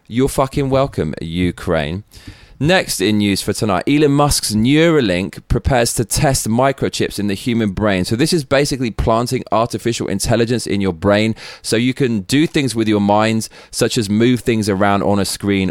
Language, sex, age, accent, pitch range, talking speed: English, male, 20-39, British, 95-125 Hz, 175 wpm